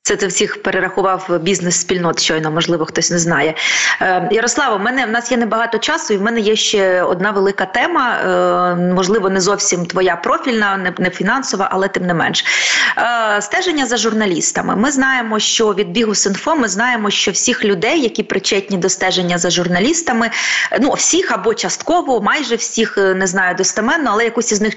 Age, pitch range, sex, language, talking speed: 30-49, 185-225 Hz, female, Ukrainian, 180 wpm